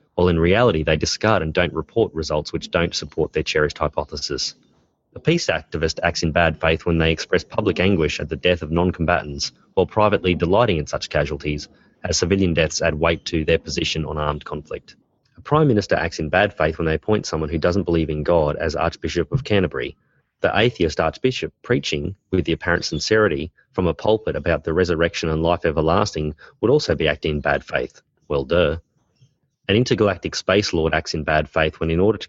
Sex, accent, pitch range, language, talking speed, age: male, Australian, 80-95 Hz, English, 200 wpm, 30-49